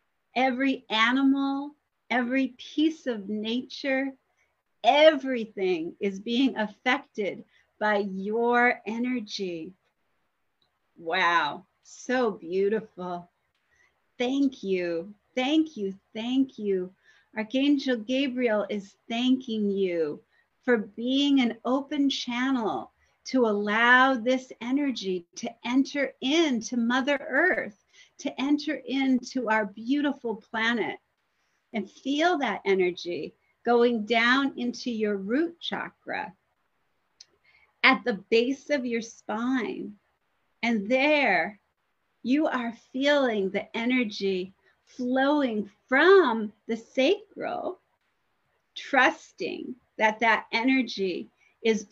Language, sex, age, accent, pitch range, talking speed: English, female, 40-59, American, 215-270 Hz, 90 wpm